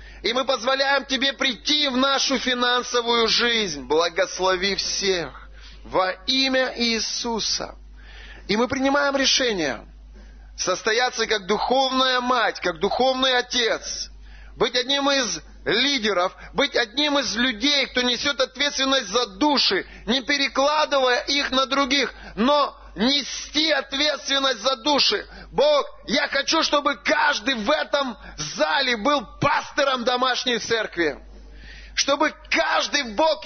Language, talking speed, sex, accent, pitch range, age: Russian, 115 wpm, male, native, 210-285 Hz, 30-49